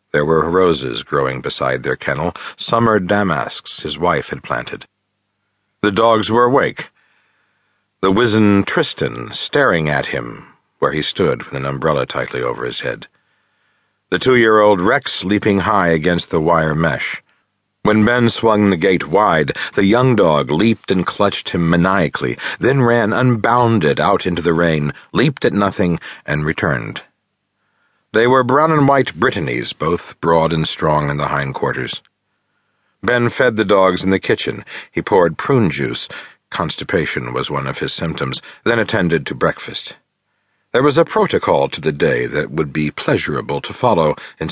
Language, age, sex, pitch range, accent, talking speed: English, 50-69, male, 85-115 Hz, American, 150 wpm